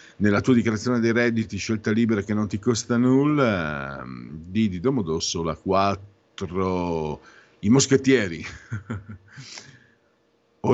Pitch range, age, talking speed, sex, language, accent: 90-115 Hz, 50-69, 105 wpm, male, Italian, native